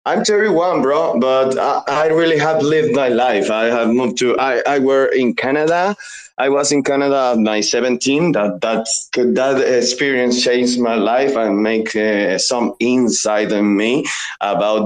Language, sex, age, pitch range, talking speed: English, male, 20-39, 110-135 Hz, 170 wpm